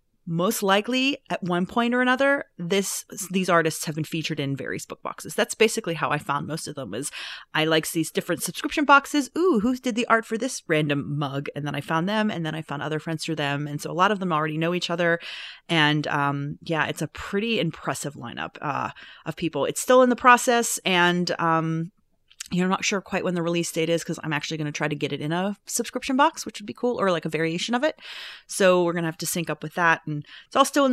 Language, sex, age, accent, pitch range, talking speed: English, female, 30-49, American, 155-195 Hz, 250 wpm